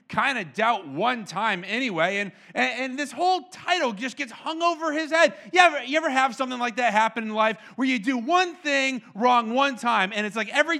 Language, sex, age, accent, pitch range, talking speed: English, male, 30-49, American, 210-280 Hz, 230 wpm